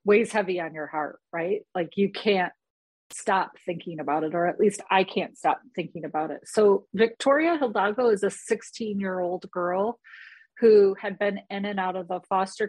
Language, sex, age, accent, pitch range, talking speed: English, female, 40-59, American, 180-220 Hz, 180 wpm